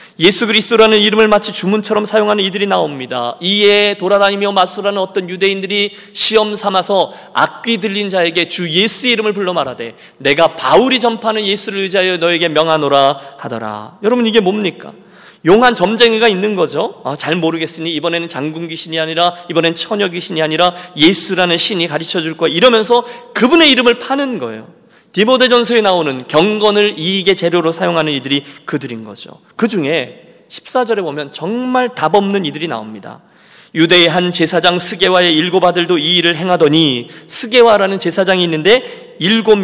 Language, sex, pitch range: Korean, male, 165-225 Hz